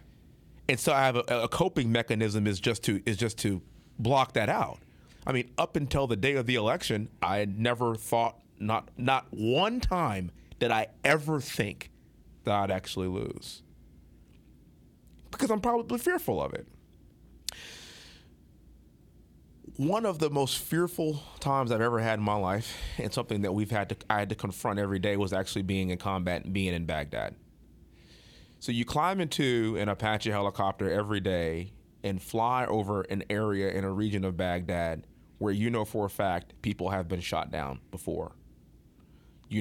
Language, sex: English, male